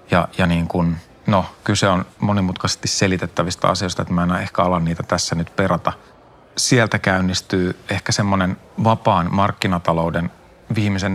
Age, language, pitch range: 30-49, Finnish, 85-105 Hz